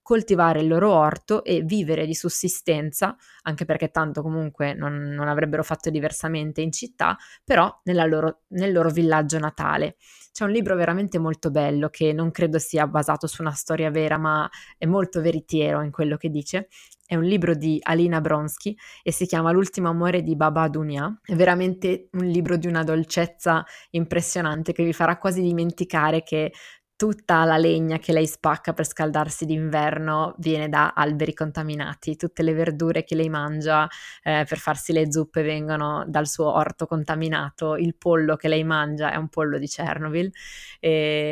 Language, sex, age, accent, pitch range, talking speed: Italian, female, 20-39, native, 155-175 Hz, 165 wpm